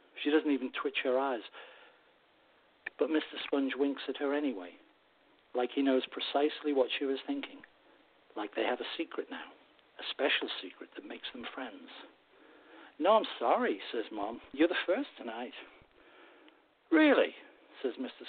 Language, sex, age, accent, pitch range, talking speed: English, male, 60-79, British, 185-295 Hz, 150 wpm